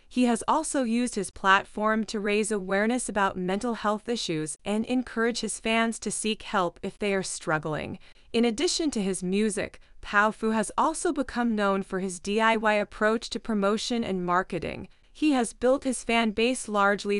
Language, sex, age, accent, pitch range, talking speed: English, female, 20-39, American, 190-230 Hz, 175 wpm